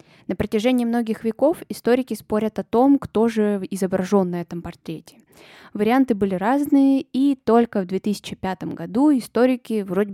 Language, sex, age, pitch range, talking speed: Russian, female, 20-39, 185-240 Hz, 140 wpm